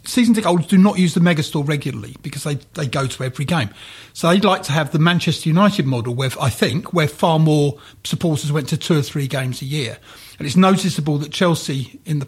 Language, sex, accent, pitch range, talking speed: English, male, British, 140-175 Hz, 235 wpm